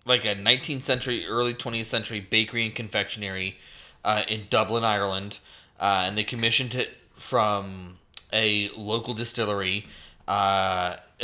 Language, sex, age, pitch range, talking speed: English, male, 20-39, 95-115 Hz, 130 wpm